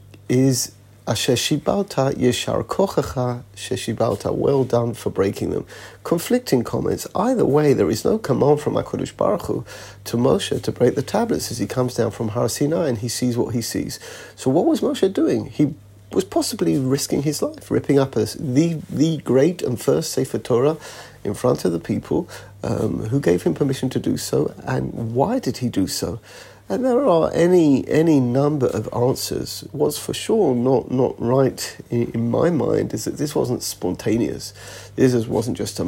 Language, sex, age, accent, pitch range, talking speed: English, male, 40-59, British, 115-140 Hz, 180 wpm